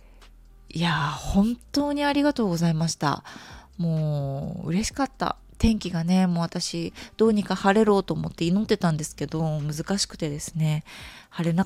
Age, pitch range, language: 20-39, 150-195 Hz, Japanese